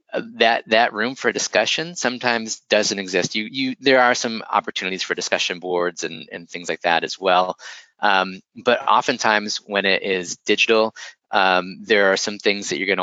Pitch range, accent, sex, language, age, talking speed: 90-115 Hz, American, male, English, 30-49, 185 wpm